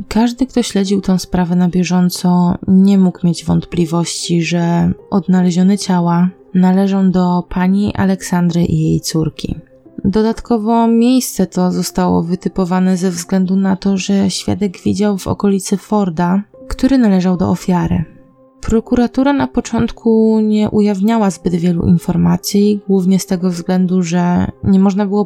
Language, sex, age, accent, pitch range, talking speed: Polish, female, 20-39, native, 175-205 Hz, 135 wpm